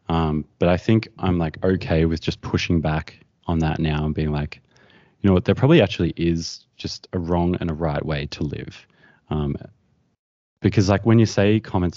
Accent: Australian